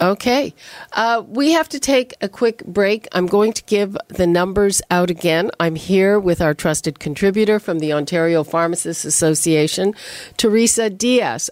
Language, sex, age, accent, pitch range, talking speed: English, female, 50-69, American, 160-200 Hz, 155 wpm